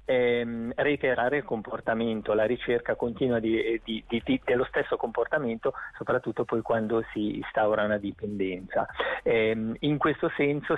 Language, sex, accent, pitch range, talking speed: Italian, male, native, 115-135 Hz, 140 wpm